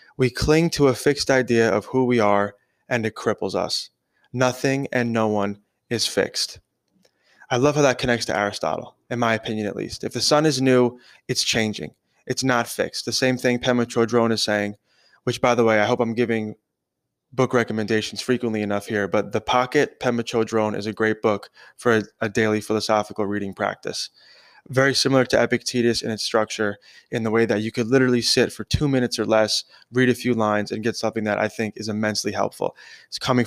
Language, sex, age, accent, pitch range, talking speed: English, male, 20-39, American, 110-125 Hz, 200 wpm